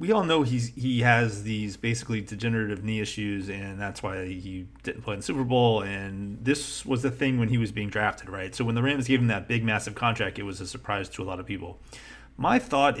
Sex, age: male, 30-49